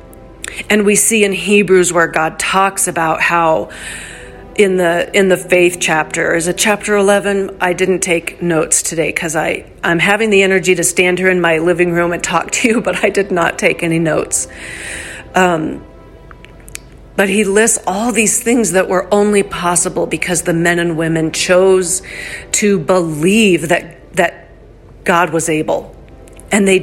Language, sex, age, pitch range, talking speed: English, female, 40-59, 170-195 Hz, 165 wpm